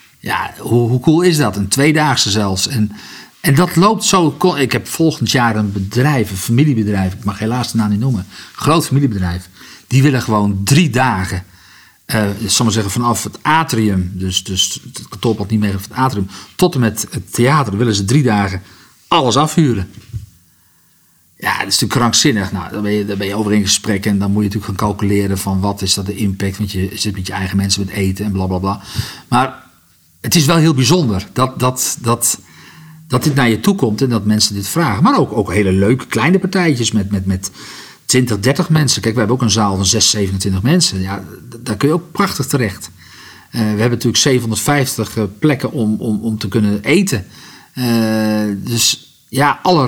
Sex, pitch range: male, 100-140 Hz